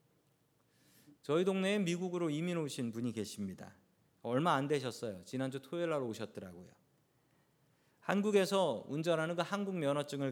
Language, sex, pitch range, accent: Korean, male, 115-160 Hz, native